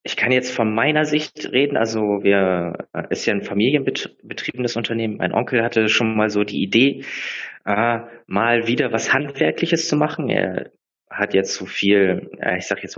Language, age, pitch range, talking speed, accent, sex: German, 20-39, 100-120 Hz, 185 wpm, German, male